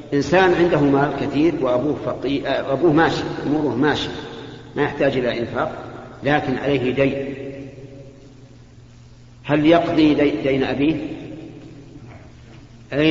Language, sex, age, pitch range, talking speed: Arabic, male, 50-69, 120-145 Hz, 100 wpm